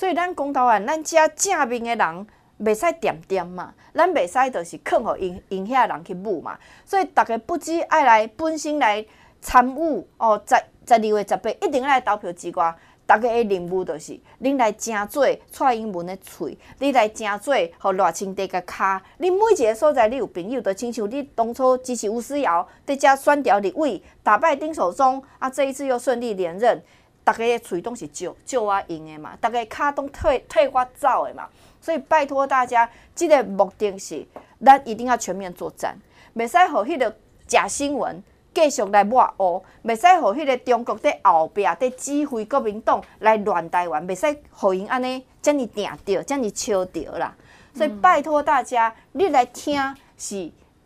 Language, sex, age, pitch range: Chinese, female, 30-49, 200-285 Hz